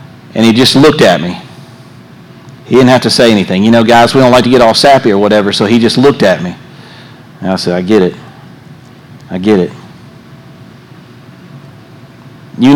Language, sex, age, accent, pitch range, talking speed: English, male, 40-59, American, 115-145 Hz, 190 wpm